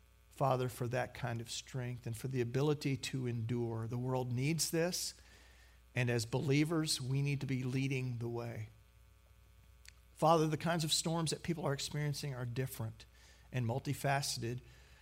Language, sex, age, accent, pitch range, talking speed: English, male, 50-69, American, 115-140 Hz, 155 wpm